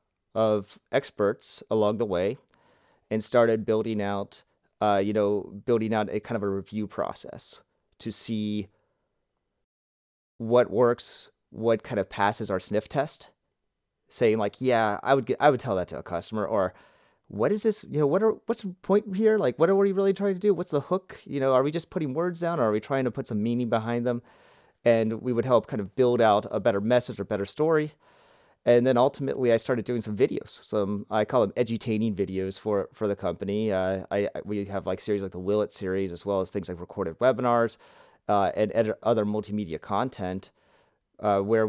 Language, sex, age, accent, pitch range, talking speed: English, male, 30-49, American, 100-125 Hz, 205 wpm